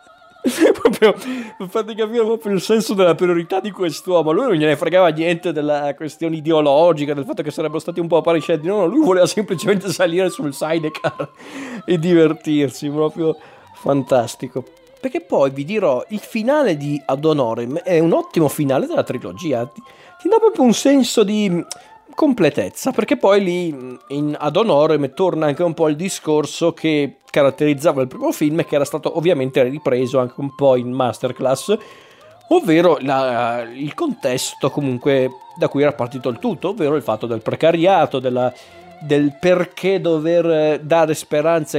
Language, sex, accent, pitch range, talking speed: Italian, male, native, 145-190 Hz, 150 wpm